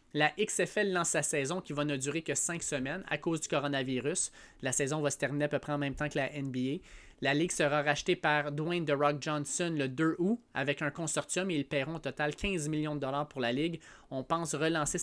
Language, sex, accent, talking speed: French, male, Canadian, 240 wpm